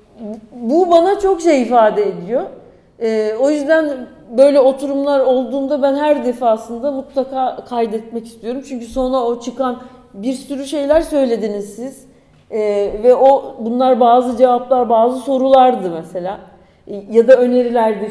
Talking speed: 135 wpm